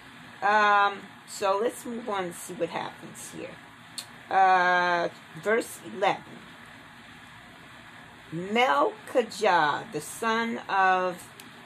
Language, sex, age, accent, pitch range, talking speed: English, female, 40-59, American, 160-205 Hz, 85 wpm